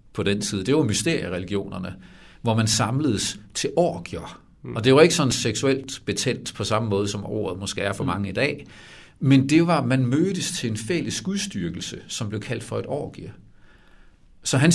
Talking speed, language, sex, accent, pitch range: 190 wpm, Danish, male, native, 105-145 Hz